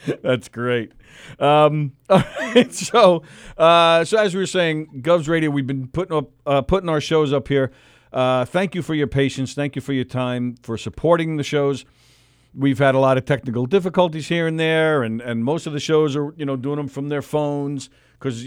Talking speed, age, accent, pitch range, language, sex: 205 wpm, 50-69, American, 120-155 Hz, English, male